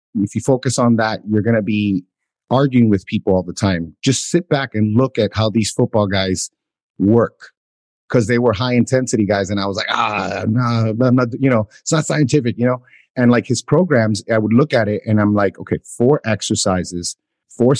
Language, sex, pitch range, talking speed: English, male, 105-125 Hz, 205 wpm